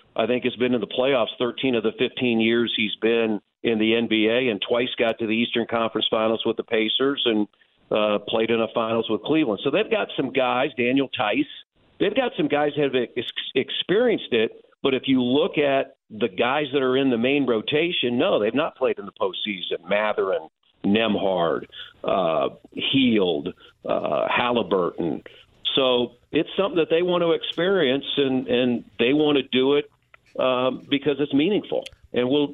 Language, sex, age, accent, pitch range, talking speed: English, male, 50-69, American, 115-145 Hz, 185 wpm